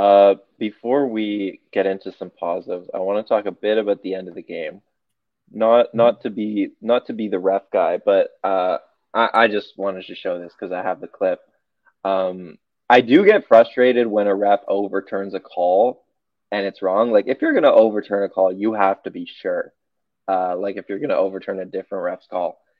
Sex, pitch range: male, 95-115 Hz